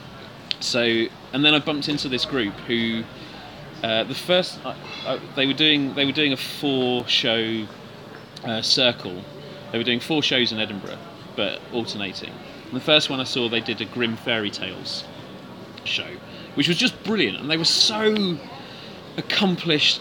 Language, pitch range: English, 115-150 Hz